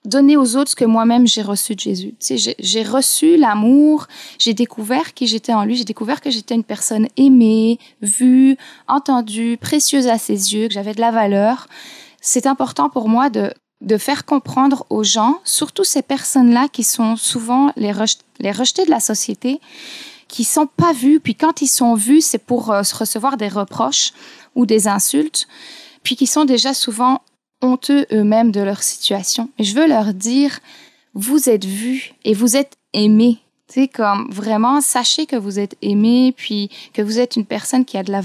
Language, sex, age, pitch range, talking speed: French, female, 20-39, 220-280 Hz, 190 wpm